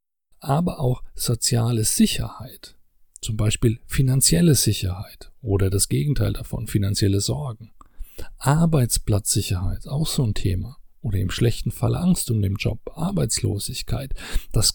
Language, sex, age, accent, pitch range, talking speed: German, male, 40-59, German, 105-135 Hz, 120 wpm